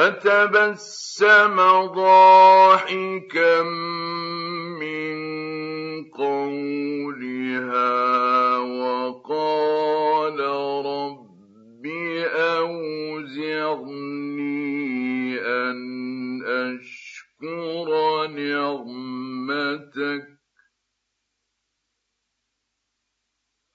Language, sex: Arabic, male